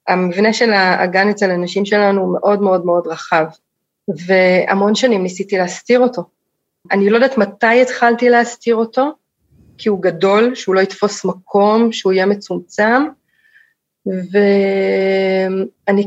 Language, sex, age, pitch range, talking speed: Hebrew, female, 30-49, 185-230 Hz, 125 wpm